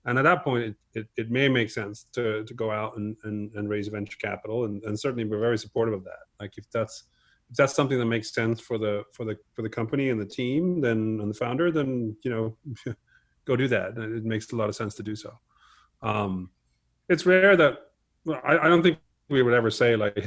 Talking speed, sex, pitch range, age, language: 235 wpm, male, 105-125 Hz, 30-49, English